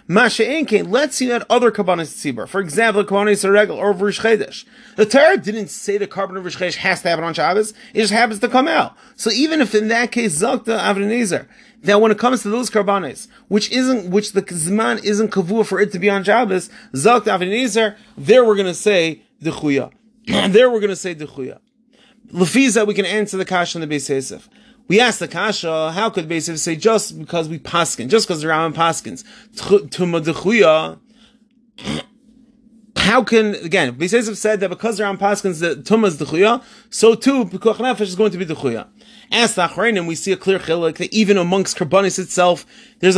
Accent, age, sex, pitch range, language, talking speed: American, 30-49, male, 185-230 Hz, English, 190 wpm